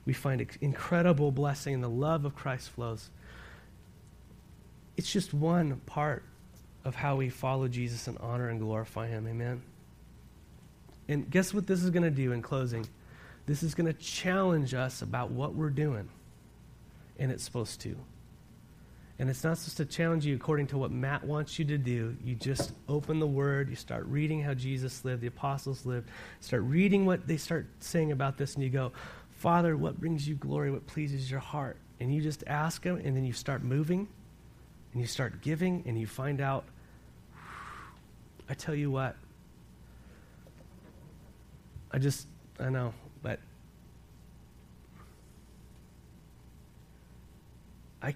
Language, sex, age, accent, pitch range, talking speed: English, male, 30-49, American, 115-150 Hz, 160 wpm